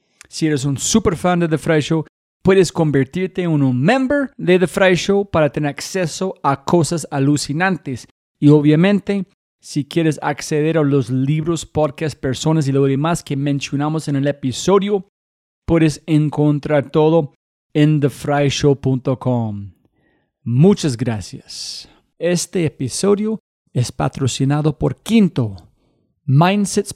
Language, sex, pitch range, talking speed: Spanish, male, 140-180 Hz, 125 wpm